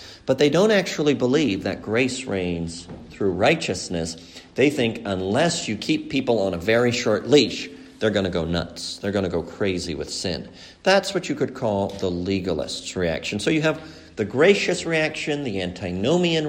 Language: English